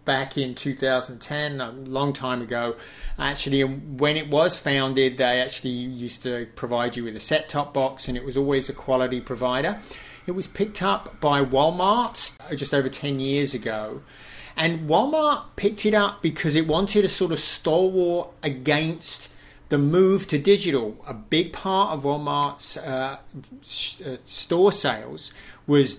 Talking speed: 160 wpm